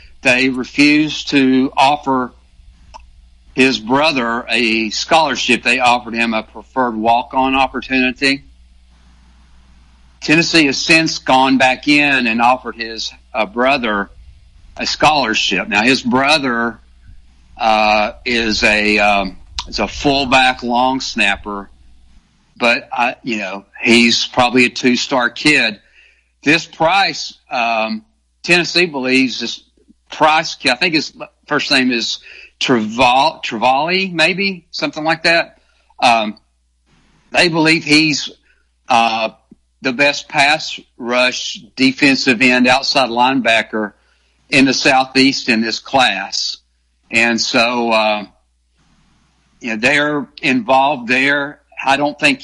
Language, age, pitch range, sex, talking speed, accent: English, 60-79, 105-135 Hz, male, 110 wpm, American